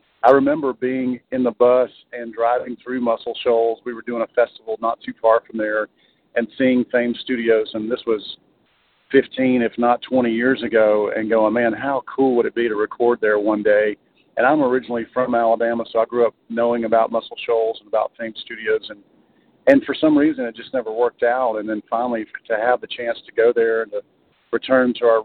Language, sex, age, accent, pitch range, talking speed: English, male, 40-59, American, 115-130 Hz, 210 wpm